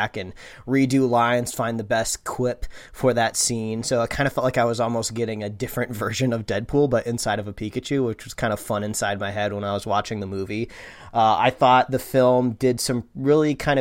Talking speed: 230 wpm